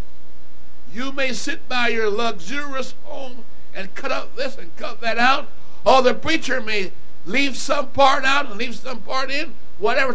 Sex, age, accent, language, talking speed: male, 60-79, American, English, 170 wpm